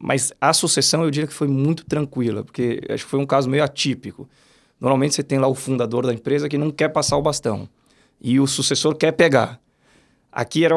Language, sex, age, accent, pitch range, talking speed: Portuguese, male, 20-39, Brazilian, 115-145 Hz, 210 wpm